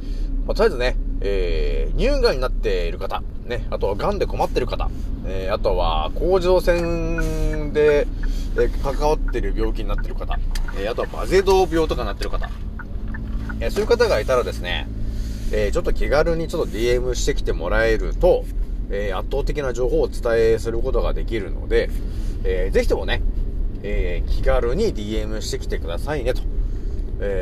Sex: male